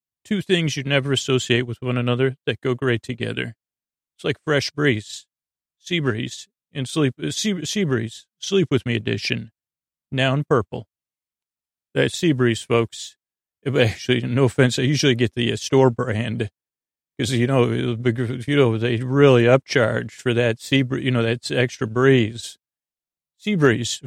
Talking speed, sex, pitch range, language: 155 wpm, male, 120-145 Hz, English